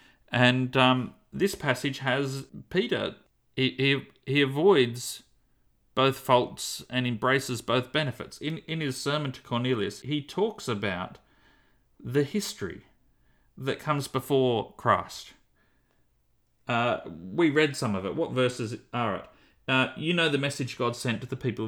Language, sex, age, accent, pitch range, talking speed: English, male, 40-59, Australian, 110-135 Hz, 140 wpm